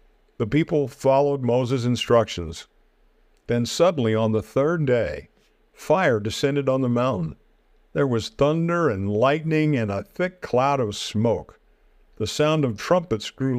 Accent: American